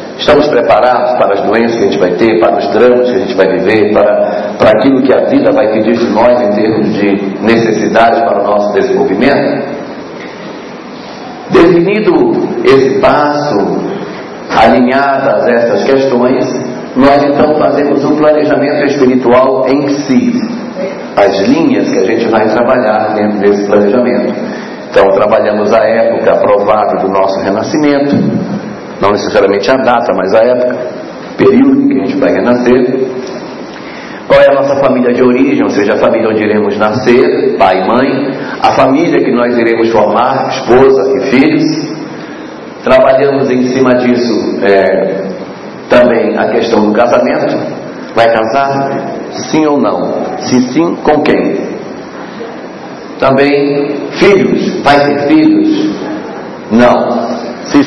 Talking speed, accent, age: 140 wpm, Brazilian, 50-69